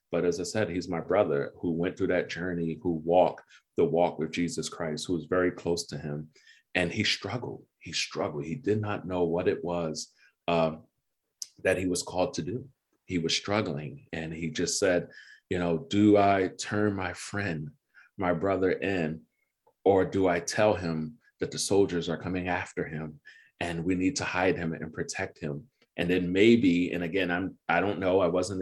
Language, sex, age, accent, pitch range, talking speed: English, male, 30-49, American, 85-100 Hz, 195 wpm